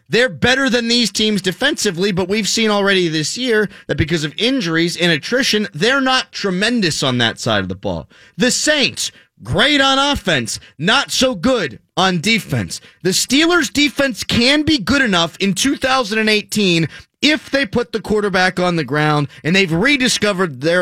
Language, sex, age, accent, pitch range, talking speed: English, male, 30-49, American, 150-225 Hz, 165 wpm